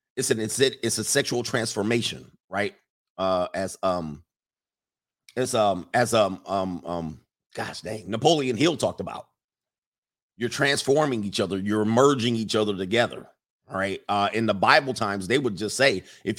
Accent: American